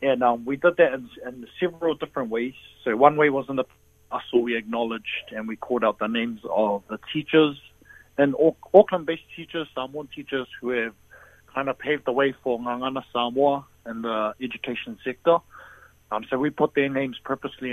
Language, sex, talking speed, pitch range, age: English, male, 185 wpm, 110-140 Hz, 30-49